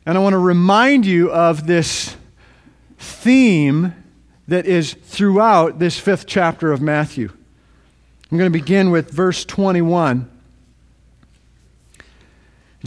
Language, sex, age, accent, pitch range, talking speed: English, male, 50-69, American, 150-200 Hz, 110 wpm